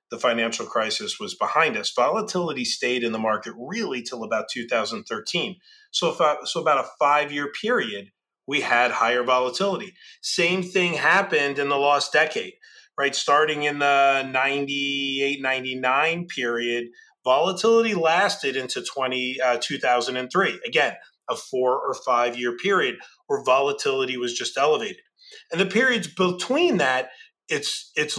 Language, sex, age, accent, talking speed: English, male, 30-49, American, 140 wpm